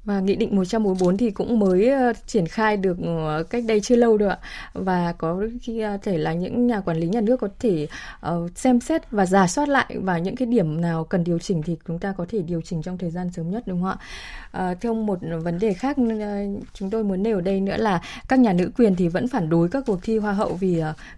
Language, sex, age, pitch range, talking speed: Vietnamese, female, 20-39, 185-235 Hz, 255 wpm